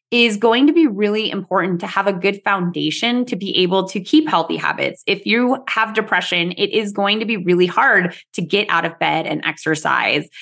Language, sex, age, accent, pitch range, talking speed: English, female, 20-39, American, 170-220 Hz, 205 wpm